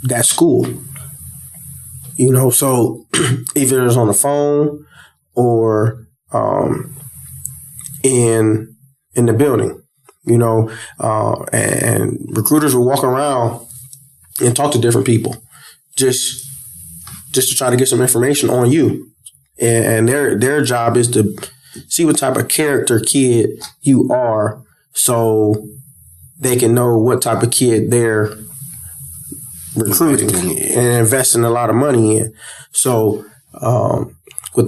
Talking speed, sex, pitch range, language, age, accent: 130 wpm, male, 110-130 Hz, English, 20-39, American